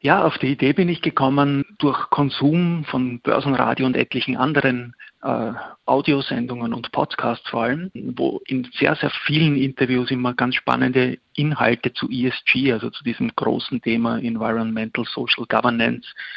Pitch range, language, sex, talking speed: 120-135 Hz, German, male, 145 wpm